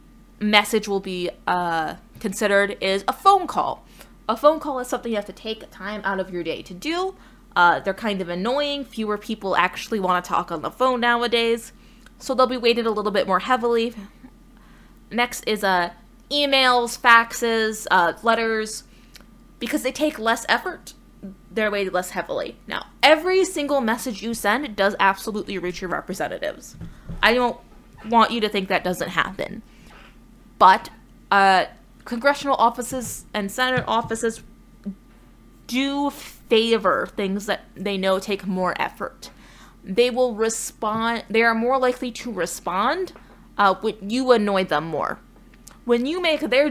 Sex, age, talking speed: female, 20-39, 155 wpm